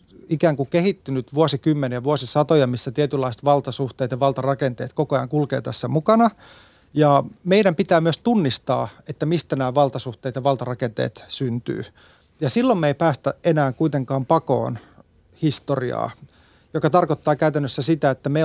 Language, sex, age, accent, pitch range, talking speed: Finnish, male, 30-49, native, 130-155 Hz, 135 wpm